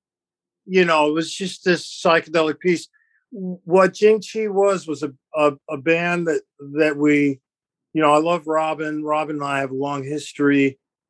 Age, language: 50-69, English